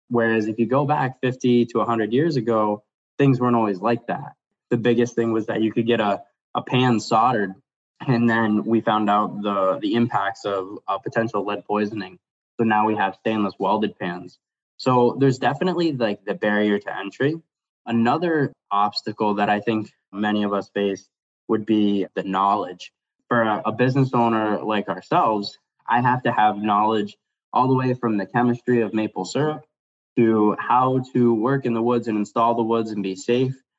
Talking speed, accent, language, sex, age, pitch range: 185 wpm, American, English, male, 10-29, 105-120 Hz